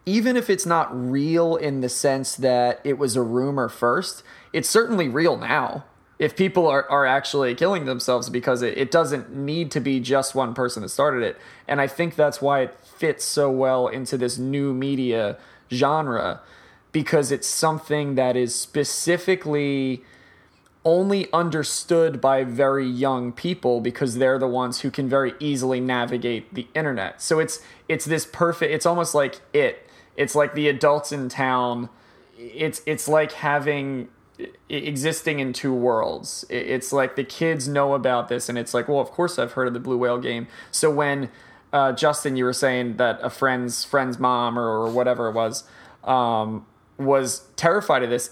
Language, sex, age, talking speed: English, male, 20-39, 175 wpm